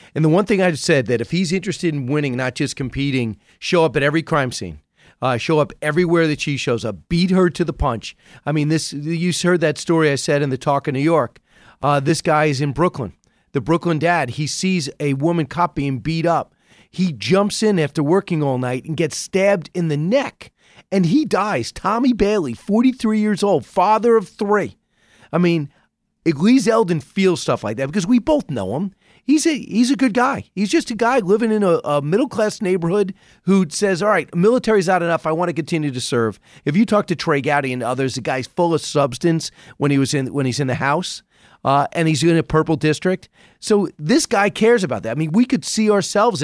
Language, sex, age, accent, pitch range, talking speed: English, male, 40-59, American, 145-195 Hz, 225 wpm